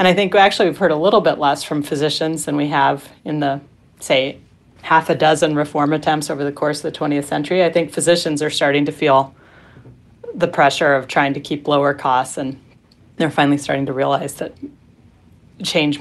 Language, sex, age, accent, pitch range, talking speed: English, female, 30-49, American, 145-175 Hz, 200 wpm